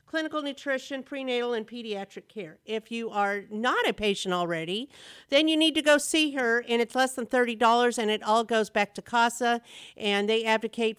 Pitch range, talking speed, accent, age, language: 215-260 Hz, 190 wpm, American, 50-69, English